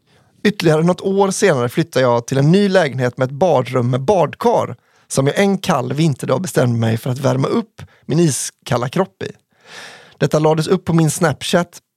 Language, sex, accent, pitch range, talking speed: English, male, Swedish, 130-175 Hz, 180 wpm